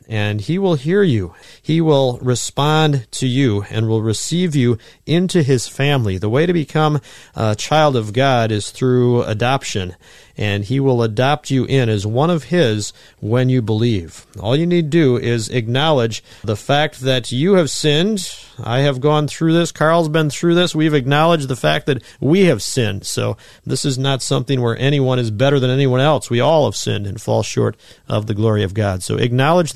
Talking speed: 195 wpm